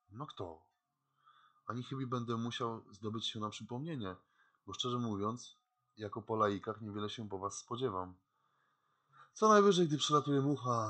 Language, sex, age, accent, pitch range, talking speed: Polish, male, 20-39, native, 105-135 Hz, 145 wpm